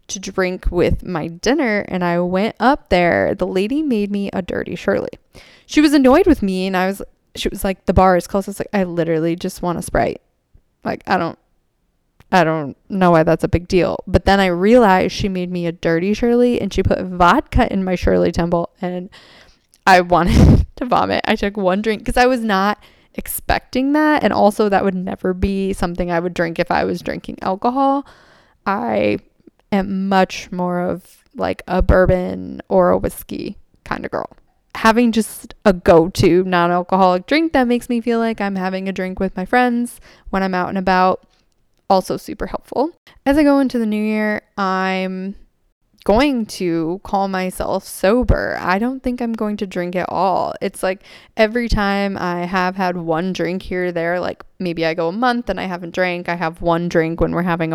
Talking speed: 200 wpm